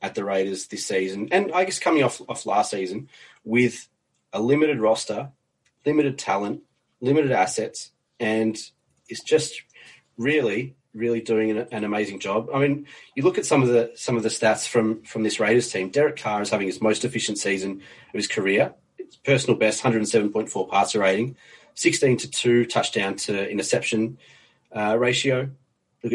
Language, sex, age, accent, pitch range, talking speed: English, male, 30-49, Australian, 110-130 Hz, 170 wpm